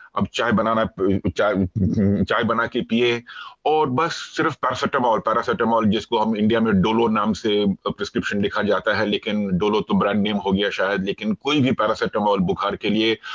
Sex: male